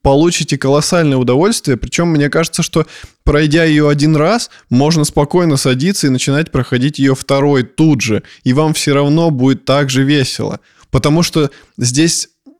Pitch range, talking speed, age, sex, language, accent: 130-155 Hz, 155 wpm, 20-39, male, Russian, native